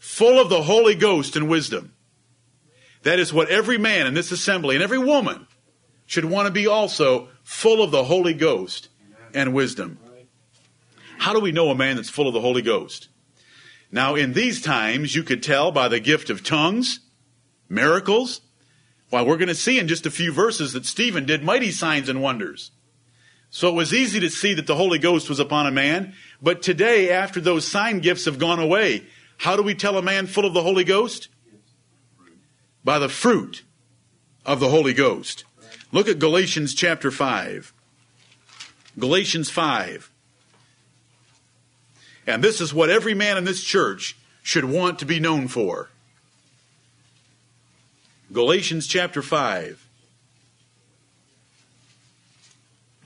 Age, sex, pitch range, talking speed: 50-69, male, 130-195 Hz, 155 wpm